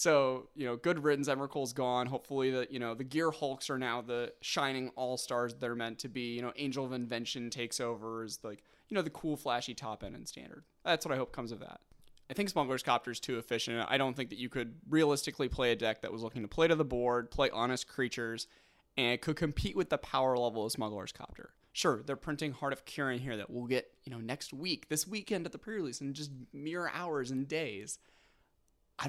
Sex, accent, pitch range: male, American, 120-140 Hz